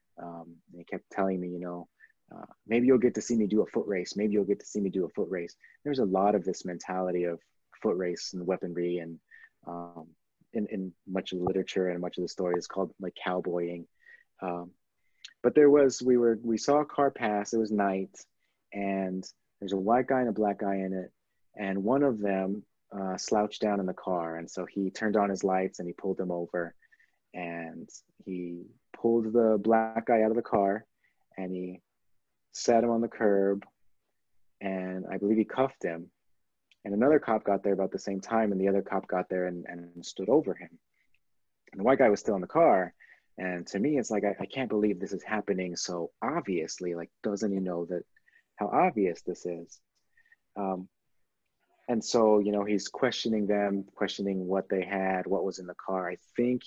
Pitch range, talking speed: 90-110 Hz, 210 wpm